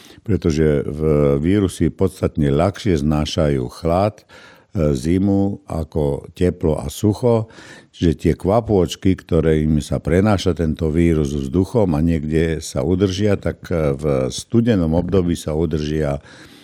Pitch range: 75-95 Hz